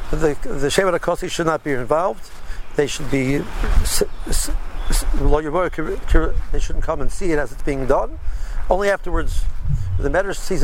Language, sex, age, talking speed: English, male, 60-79, 145 wpm